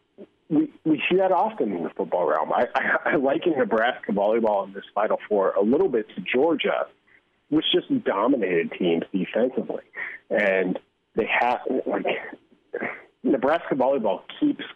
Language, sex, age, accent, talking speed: English, male, 40-59, American, 145 wpm